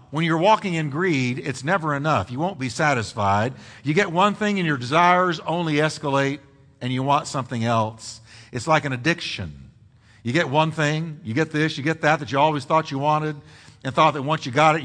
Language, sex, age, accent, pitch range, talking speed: English, male, 50-69, American, 125-195 Hz, 215 wpm